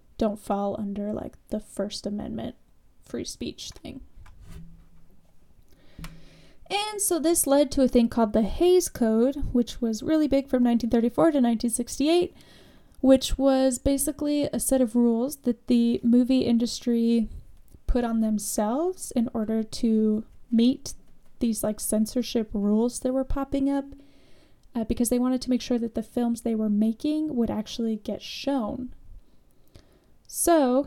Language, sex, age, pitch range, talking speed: English, female, 10-29, 220-275 Hz, 140 wpm